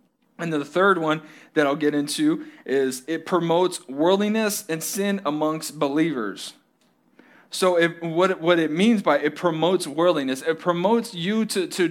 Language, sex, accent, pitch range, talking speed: English, male, American, 160-195 Hz, 150 wpm